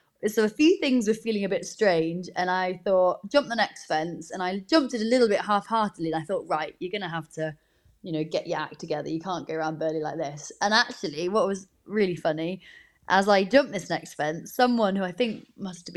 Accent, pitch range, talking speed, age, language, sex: British, 170-215 Hz, 240 wpm, 20-39, English, female